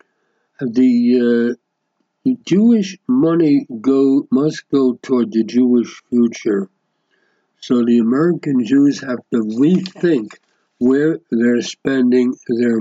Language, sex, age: English, male, 60-79